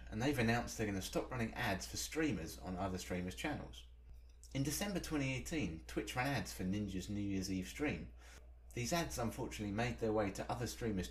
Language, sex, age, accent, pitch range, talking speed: English, male, 30-49, British, 70-110 Hz, 195 wpm